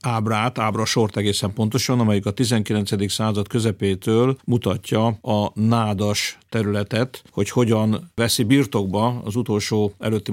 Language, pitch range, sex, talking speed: Hungarian, 105-120 Hz, male, 115 wpm